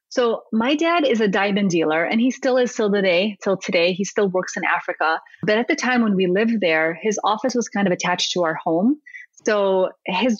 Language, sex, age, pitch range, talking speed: English, female, 30-49, 180-225 Hz, 225 wpm